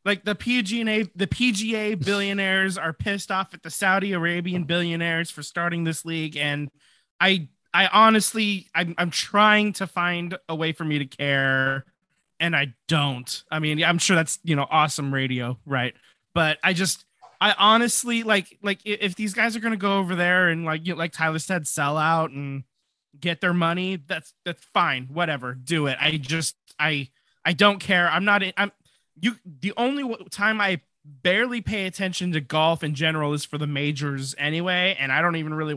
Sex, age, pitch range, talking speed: male, 20-39, 145-195 Hz, 190 wpm